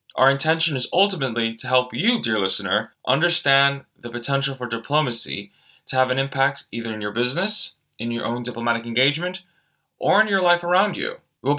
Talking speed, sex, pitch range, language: 175 wpm, male, 115-155 Hz, English